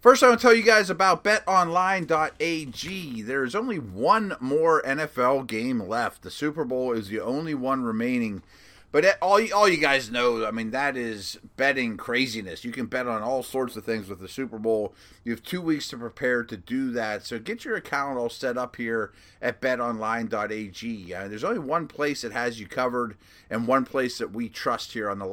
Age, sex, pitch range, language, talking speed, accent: 30-49, male, 110-150 Hz, English, 205 wpm, American